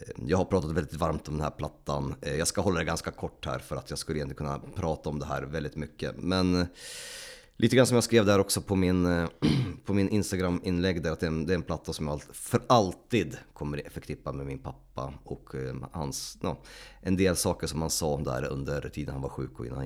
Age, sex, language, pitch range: 30-49, male, Swedish, 70-90 Hz